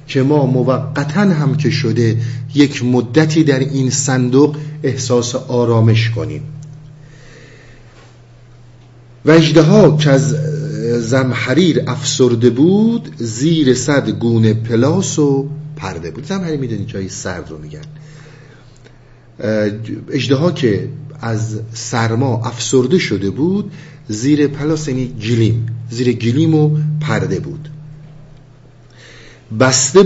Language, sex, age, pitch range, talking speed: Persian, male, 50-69, 115-150 Hz, 105 wpm